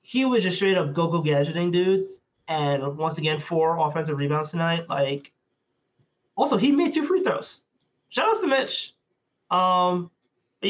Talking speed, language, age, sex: 150 wpm, English, 20-39, male